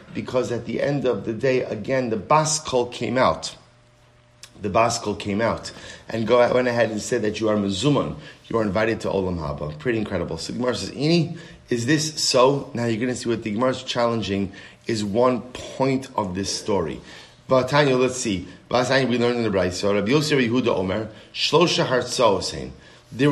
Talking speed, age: 185 wpm, 30-49